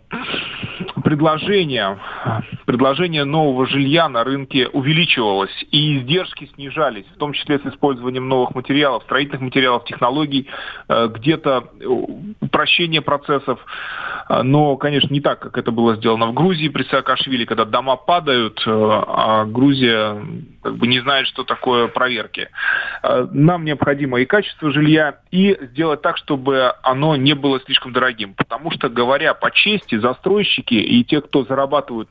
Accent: native